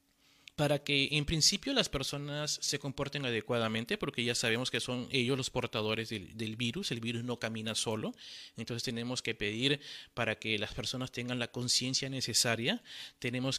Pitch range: 120-150 Hz